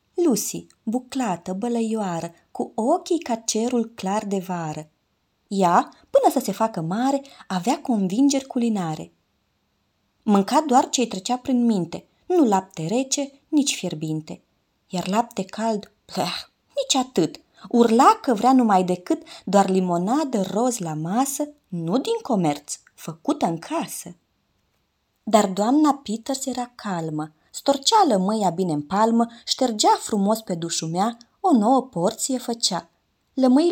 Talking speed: 125 wpm